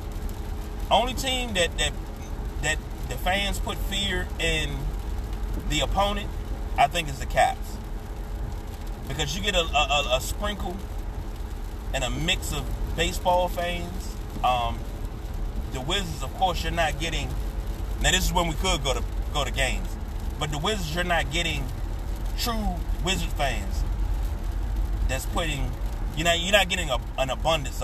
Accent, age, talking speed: American, 30-49, 150 wpm